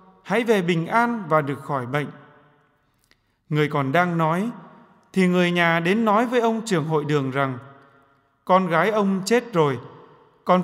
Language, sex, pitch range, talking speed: English, male, 155-205 Hz, 165 wpm